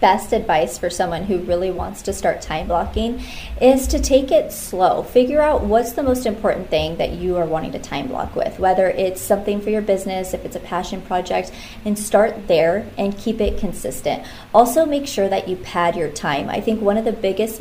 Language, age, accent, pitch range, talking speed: English, 20-39, American, 180-235 Hz, 215 wpm